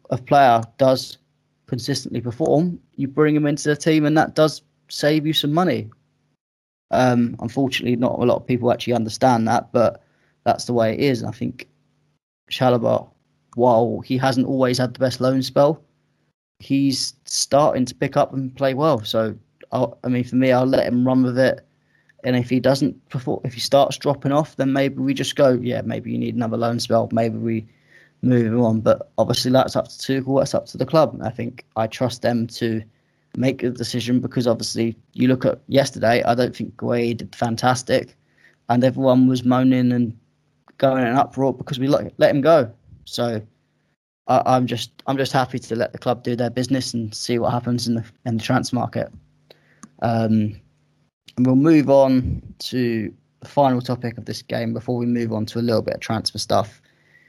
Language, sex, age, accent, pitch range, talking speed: English, male, 20-39, British, 115-135 Hz, 190 wpm